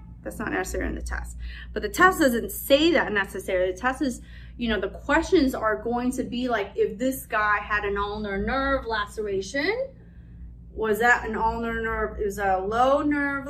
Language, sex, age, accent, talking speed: English, female, 20-39, American, 190 wpm